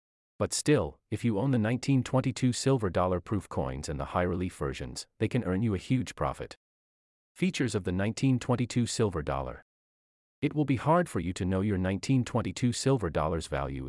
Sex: male